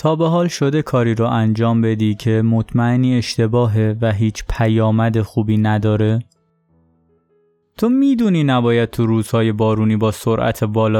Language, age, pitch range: Persian, 20-39, 110-160 Hz